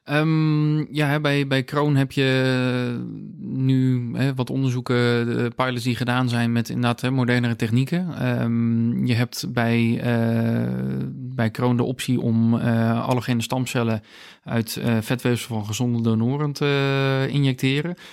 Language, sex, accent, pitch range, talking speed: Dutch, male, Dutch, 115-125 Hz, 140 wpm